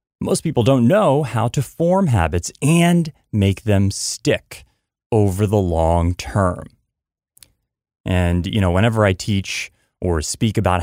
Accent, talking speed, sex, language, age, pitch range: American, 140 wpm, male, English, 30-49, 90-115 Hz